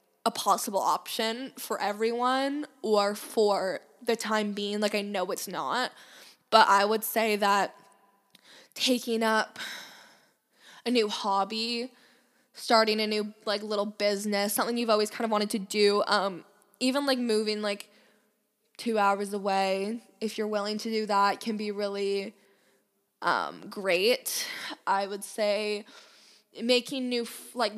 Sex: female